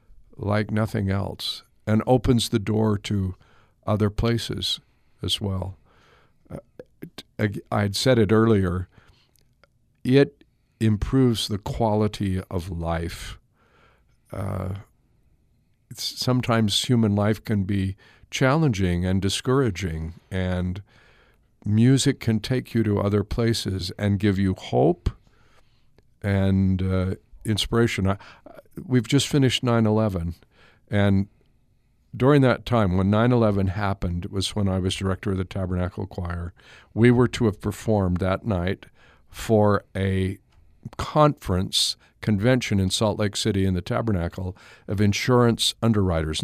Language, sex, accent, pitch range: English, male, American, 95-115 Hz